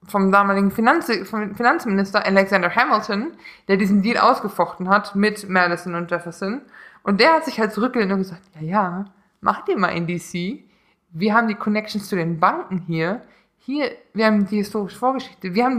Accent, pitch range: German, 195-265 Hz